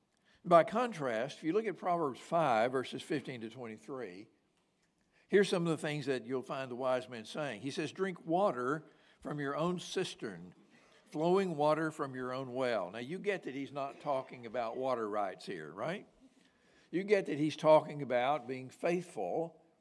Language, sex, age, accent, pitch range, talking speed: English, male, 60-79, American, 140-175 Hz, 175 wpm